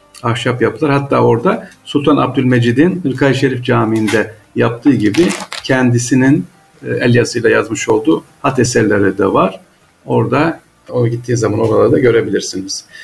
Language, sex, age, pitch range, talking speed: Turkish, male, 50-69, 110-140 Hz, 120 wpm